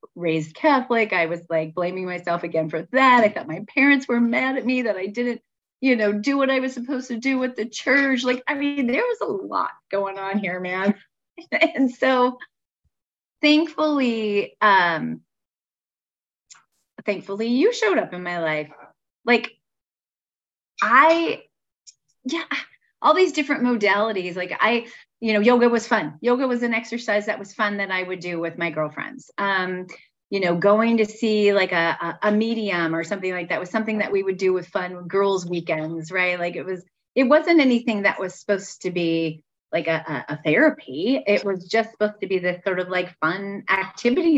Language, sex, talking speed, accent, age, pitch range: English, female, 185 wpm, American, 30-49, 185-255 Hz